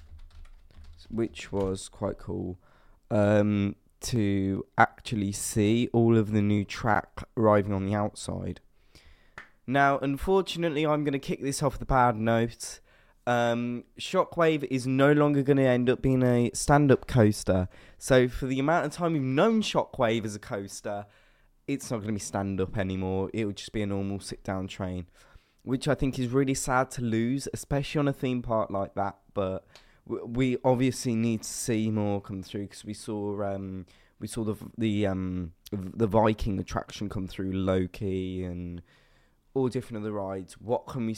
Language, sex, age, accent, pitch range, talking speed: English, male, 20-39, British, 95-130 Hz, 170 wpm